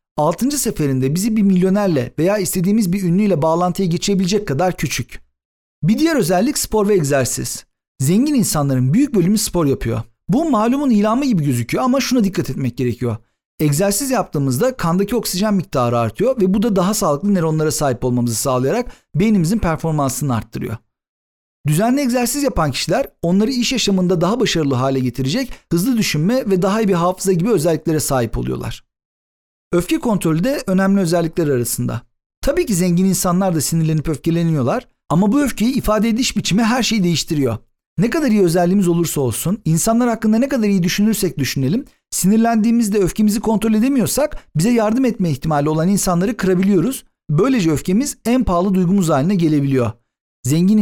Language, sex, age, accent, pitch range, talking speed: Turkish, male, 50-69, native, 150-220 Hz, 150 wpm